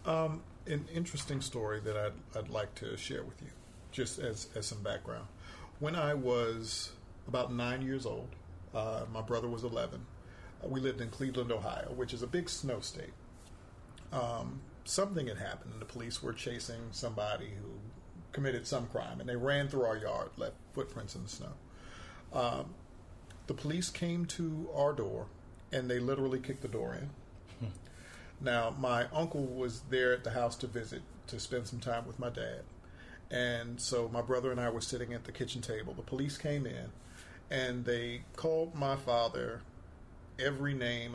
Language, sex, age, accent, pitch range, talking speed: English, male, 50-69, American, 110-135 Hz, 175 wpm